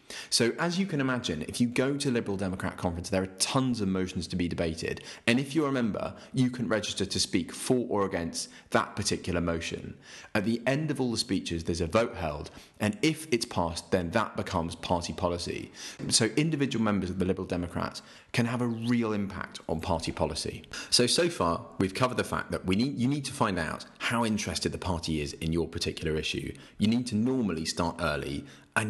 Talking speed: 210 wpm